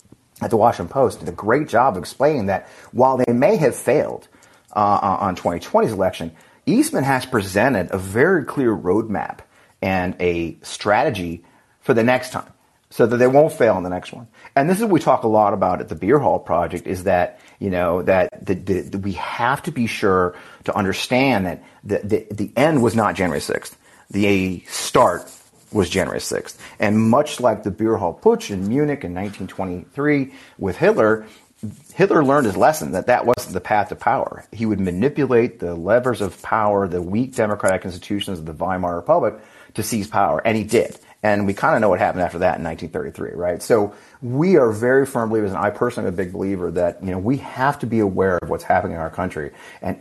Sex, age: male, 30-49